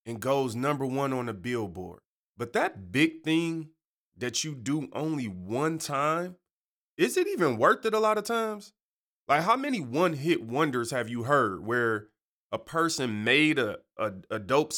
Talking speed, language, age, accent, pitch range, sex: 175 wpm, English, 30-49, American, 125-190 Hz, male